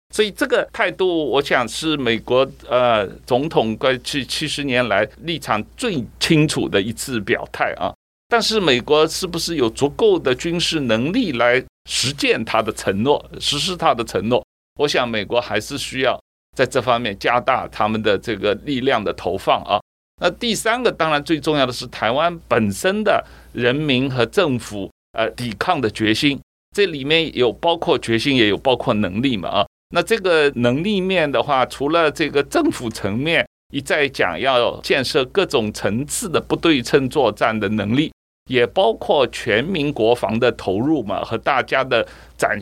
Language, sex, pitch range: Chinese, male, 120-170 Hz